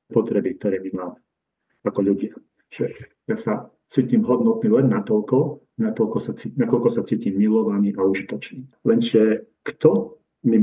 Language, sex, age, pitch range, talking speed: Slovak, male, 40-59, 100-135 Hz, 130 wpm